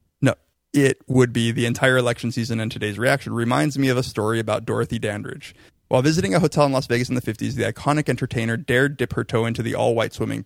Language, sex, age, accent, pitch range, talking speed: English, male, 30-49, American, 115-135 Hz, 225 wpm